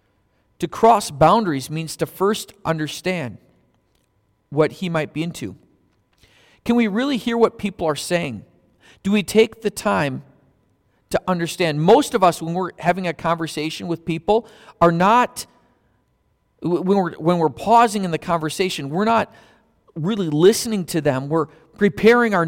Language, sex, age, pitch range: English, male, 40-59, 150-200 Hz